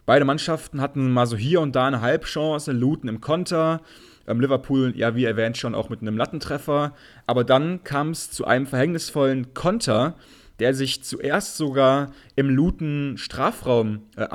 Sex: male